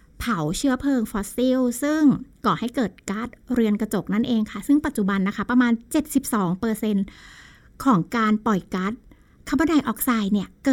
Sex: female